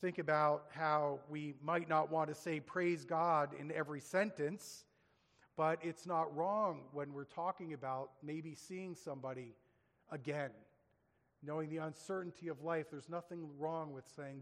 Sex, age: male, 40-59